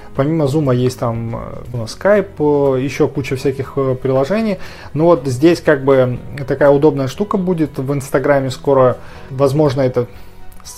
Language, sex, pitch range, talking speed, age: Russian, male, 125-140 Hz, 135 wpm, 20-39